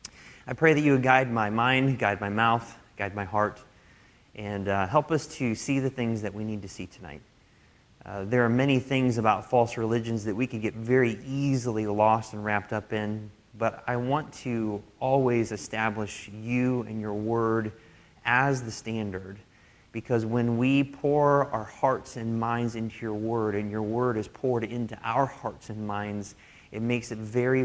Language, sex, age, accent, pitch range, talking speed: English, male, 30-49, American, 105-125 Hz, 185 wpm